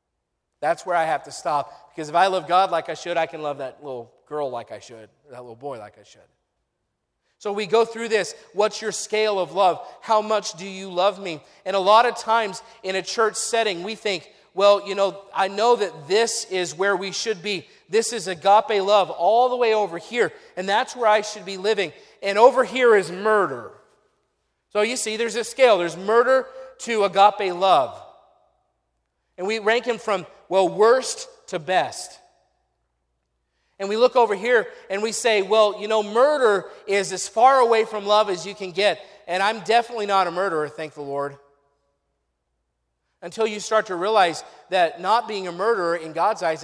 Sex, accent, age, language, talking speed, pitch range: male, American, 40-59, English, 195 wpm, 165-220 Hz